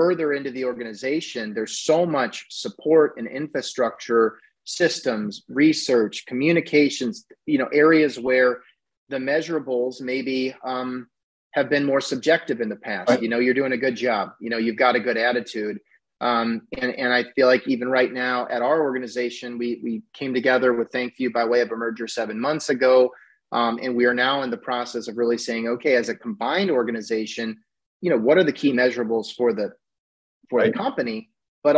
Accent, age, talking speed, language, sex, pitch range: American, 30-49, 185 wpm, English, male, 120-140 Hz